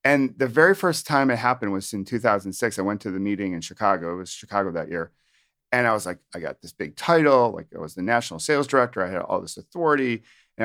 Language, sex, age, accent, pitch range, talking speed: English, male, 40-59, American, 95-125 Hz, 250 wpm